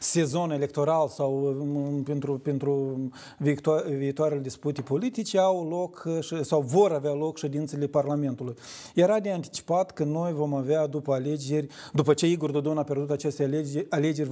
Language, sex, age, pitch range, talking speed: Romanian, male, 40-59, 145-175 Hz, 145 wpm